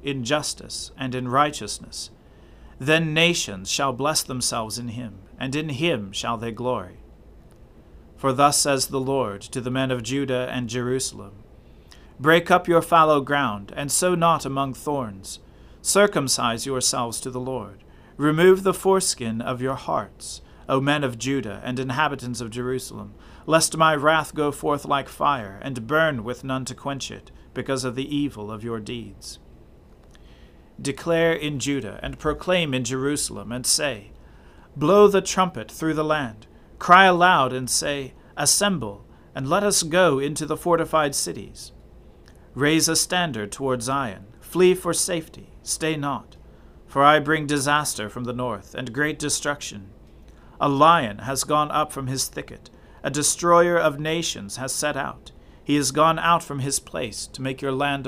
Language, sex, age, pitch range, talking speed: English, male, 40-59, 120-155 Hz, 160 wpm